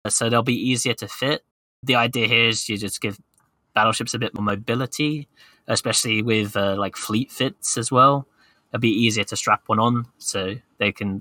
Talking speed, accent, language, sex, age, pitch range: 200 wpm, British, English, male, 20-39, 100-120 Hz